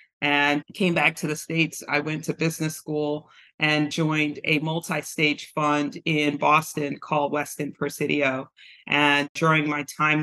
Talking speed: 145 wpm